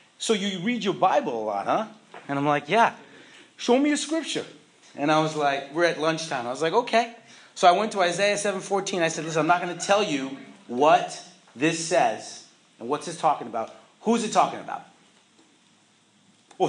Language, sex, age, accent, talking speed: English, male, 40-59, American, 200 wpm